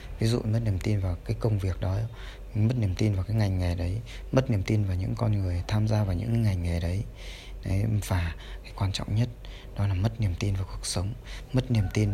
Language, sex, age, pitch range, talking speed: Vietnamese, male, 20-39, 90-115 Hz, 240 wpm